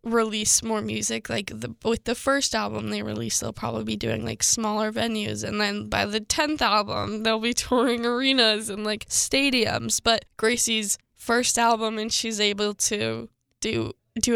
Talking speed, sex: 170 wpm, female